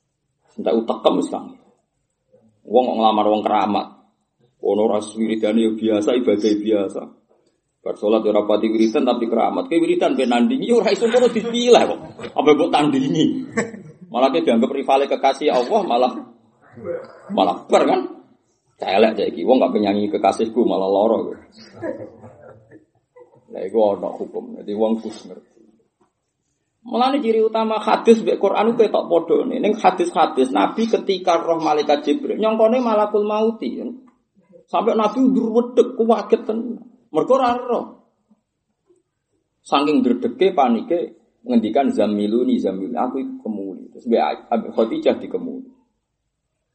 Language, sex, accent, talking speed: Indonesian, male, native, 130 wpm